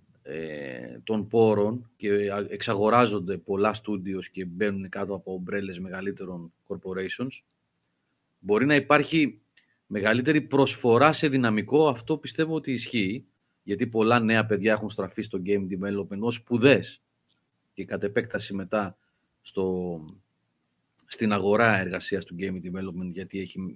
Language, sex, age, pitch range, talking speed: Greek, male, 30-49, 95-135 Hz, 120 wpm